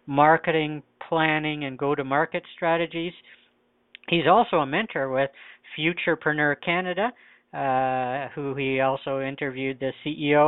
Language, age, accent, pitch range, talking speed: English, 50-69, American, 135-160 Hz, 110 wpm